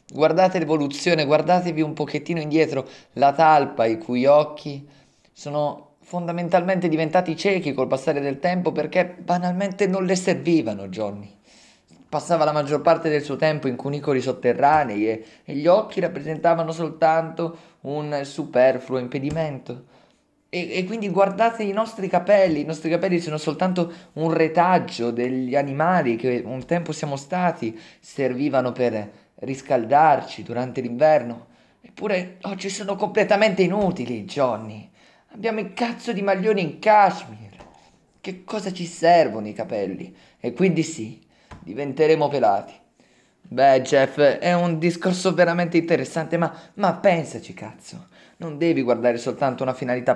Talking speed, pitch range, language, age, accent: 135 wpm, 130-175 Hz, Italian, 20-39, native